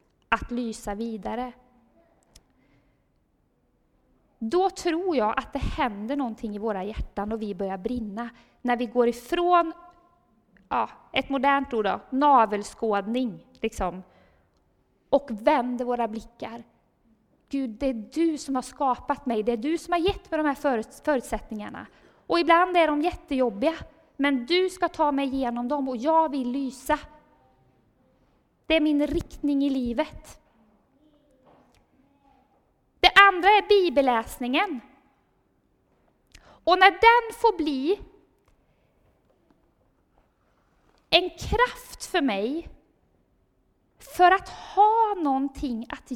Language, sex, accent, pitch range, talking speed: Swedish, female, native, 245-330 Hz, 115 wpm